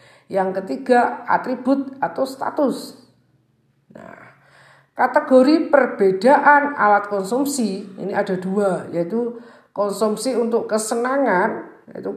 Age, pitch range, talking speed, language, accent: 50-69, 190-255 Hz, 90 wpm, Indonesian, native